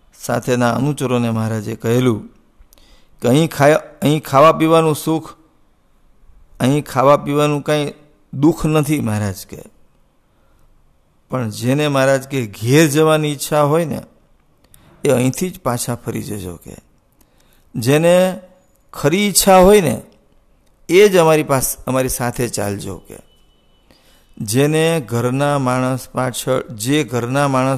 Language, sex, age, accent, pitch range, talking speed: English, male, 50-69, Indian, 110-150 Hz, 70 wpm